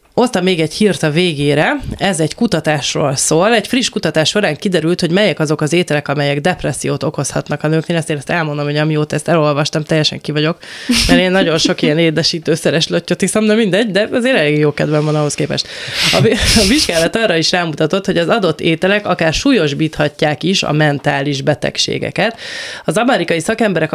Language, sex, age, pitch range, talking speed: Hungarian, female, 20-39, 150-185 Hz, 185 wpm